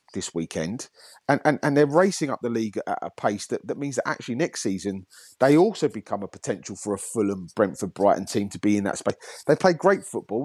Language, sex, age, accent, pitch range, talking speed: English, male, 30-49, British, 100-125 Hz, 220 wpm